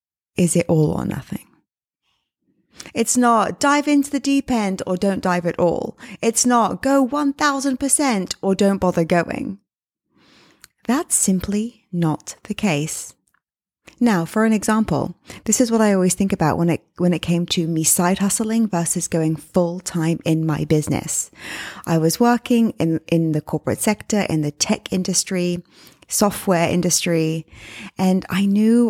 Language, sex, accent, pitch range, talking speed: English, female, British, 170-225 Hz, 155 wpm